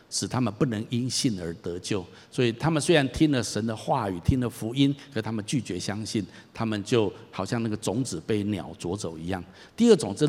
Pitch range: 110-155 Hz